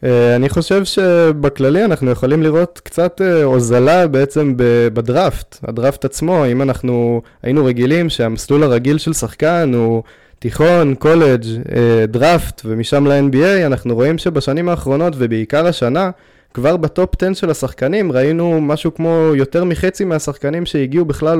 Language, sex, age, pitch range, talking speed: Hebrew, male, 20-39, 120-170 Hz, 130 wpm